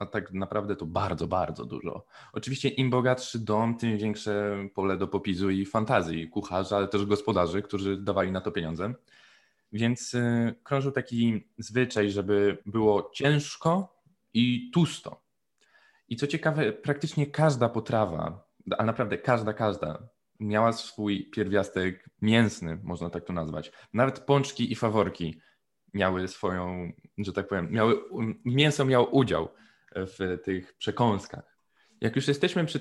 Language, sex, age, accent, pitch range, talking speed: Polish, male, 20-39, native, 100-125 Hz, 135 wpm